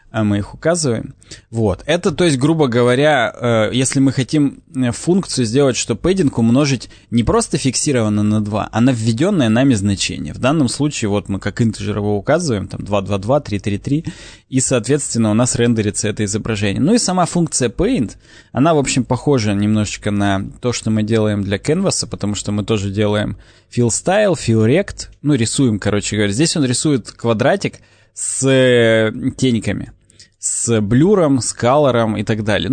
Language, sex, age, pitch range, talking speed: Russian, male, 20-39, 105-135 Hz, 170 wpm